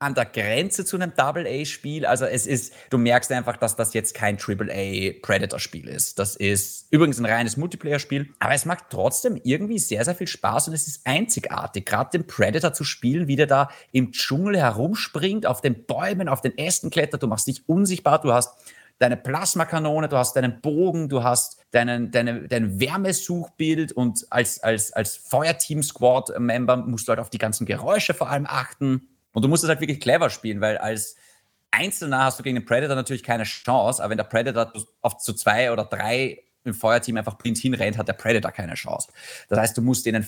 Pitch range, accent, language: 115-150 Hz, German, German